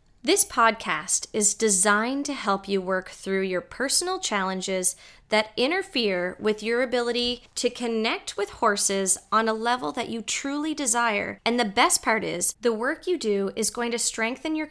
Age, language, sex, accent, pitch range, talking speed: 20-39, English, female, American, 195-245 Hz, 170 wpm